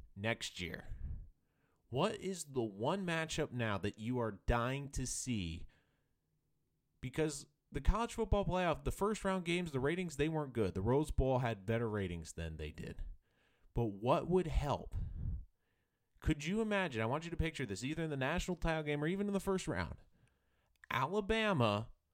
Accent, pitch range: American, 95-155 Hz